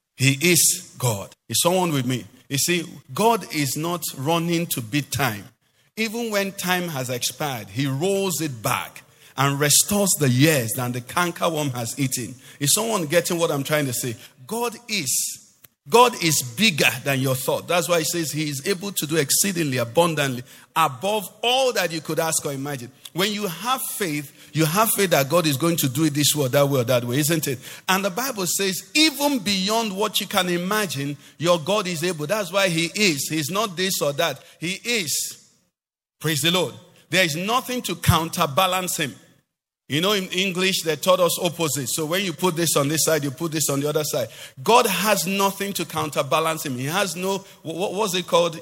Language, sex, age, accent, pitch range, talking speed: English, male, 50-69, Nigerian, 145-195 Hz, 200 wpm